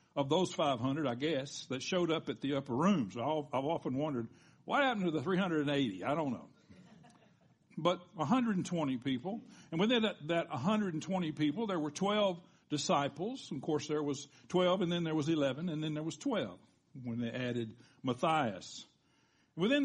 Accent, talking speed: American, 165 wpm